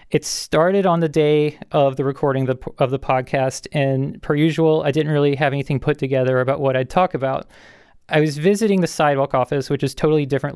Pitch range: 135-155 Hz